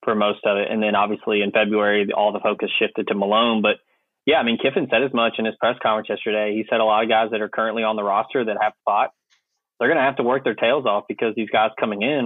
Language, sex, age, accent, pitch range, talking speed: English, male, 20-39, American, 105-125 Hz, 280 wpm